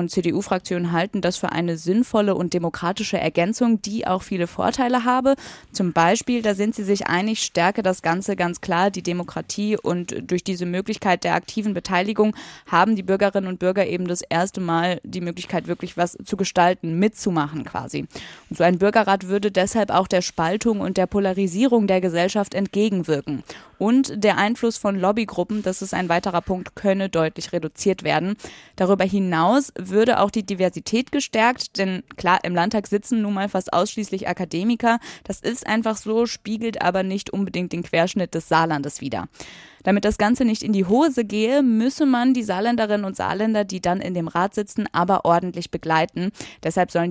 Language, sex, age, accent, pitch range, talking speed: German, female, 20-39, German, 175-210 Hz, 175 wpm